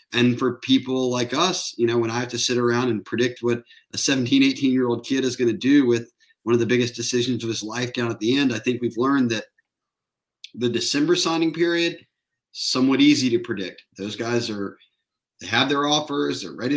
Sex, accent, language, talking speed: male, American, English, 220 wpm